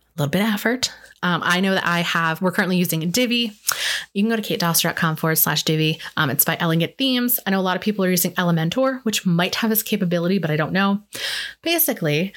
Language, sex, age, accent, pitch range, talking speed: English, female, 20-39, American, 165-230 Hz, 230 wpm